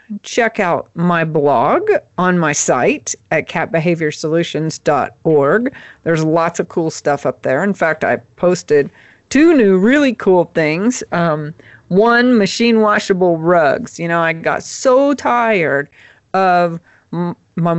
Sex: female